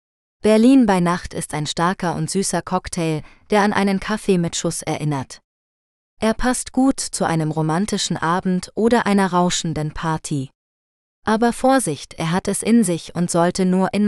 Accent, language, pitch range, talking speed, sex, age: German, German, 155-210 Hz, 160 wpm, female, 20-39